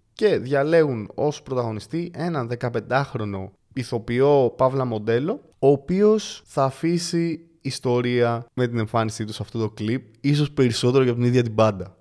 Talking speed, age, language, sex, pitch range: 150 wpm, 20-39, Greek, male, 115-155 Hz